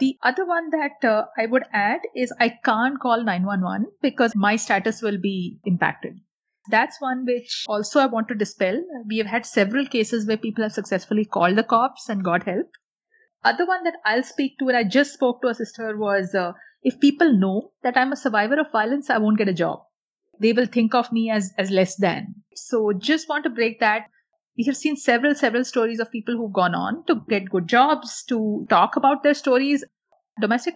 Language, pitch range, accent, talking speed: English, 205-270 Hz, Indian, 210 wpm